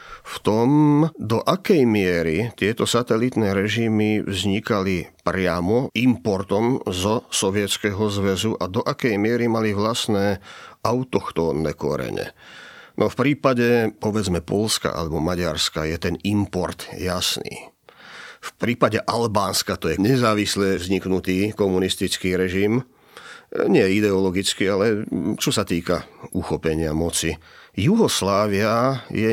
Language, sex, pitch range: Slovak, male, 90-110 Hz